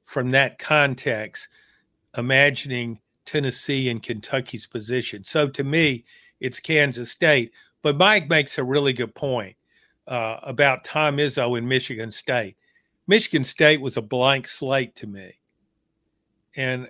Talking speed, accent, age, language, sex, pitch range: 130 wpm, American, 50-69, English, male, 130-155 Hz